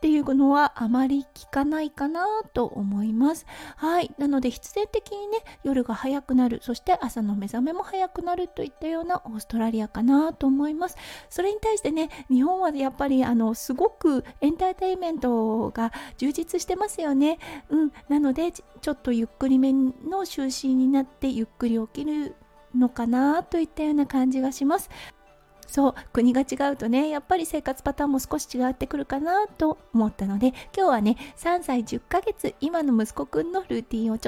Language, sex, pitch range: Japanese, female, 250-335 Hz